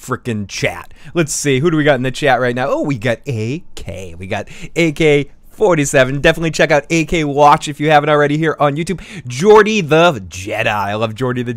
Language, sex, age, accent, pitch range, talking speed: English, male, 20-39, American, 120-160 Hz, 205 wpm